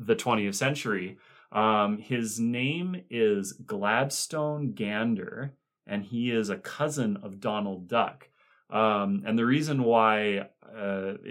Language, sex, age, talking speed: English, male, 30-49, 120 wpm